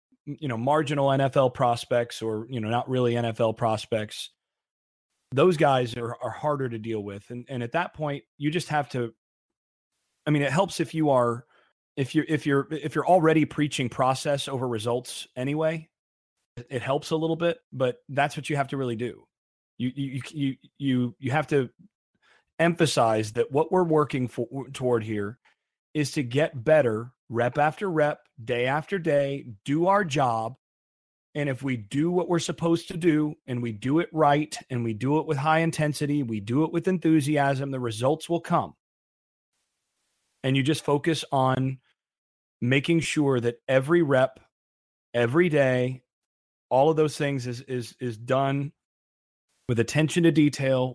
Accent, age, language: American, 30-49, English